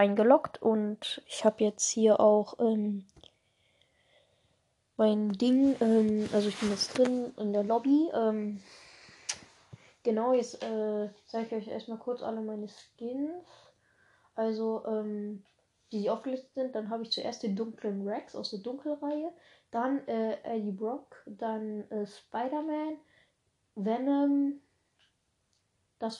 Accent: German